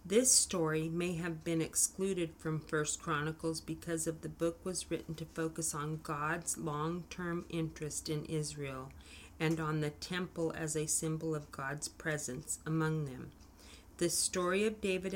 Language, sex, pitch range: English, female, 150-180 Hz